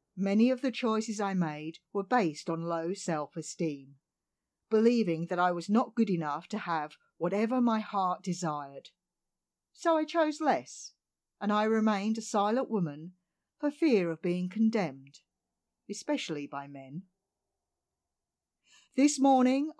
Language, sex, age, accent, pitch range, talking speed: English, female, 50-69, British, 165-225 Hz, 135 wpm